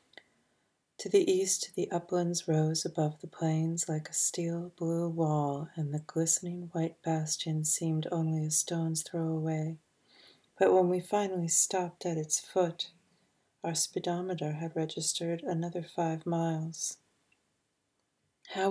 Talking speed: 130 wpm